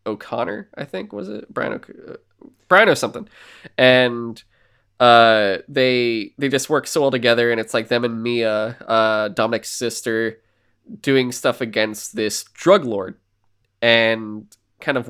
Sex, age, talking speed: male, 20-39, 145 wpm